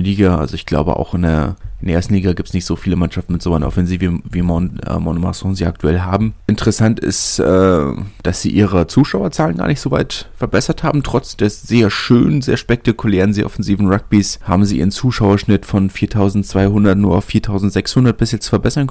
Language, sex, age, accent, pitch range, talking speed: German, male, 30-49, German, 90-105 Hz, 195 wpm